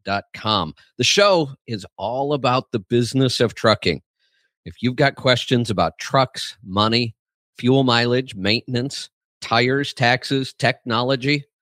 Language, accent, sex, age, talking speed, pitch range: English, American, male, 50-69, 115 wpm, 110-130 Hz